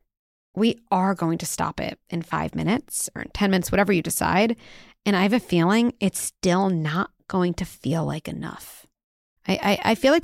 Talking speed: 200 wpm